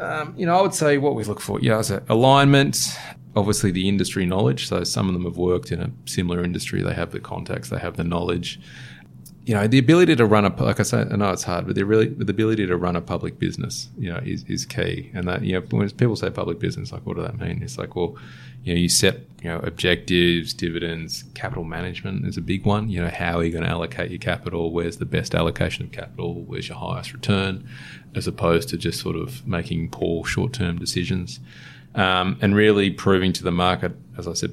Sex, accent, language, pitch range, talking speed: male, Australian, English, 85-105 Hz, 240 wpm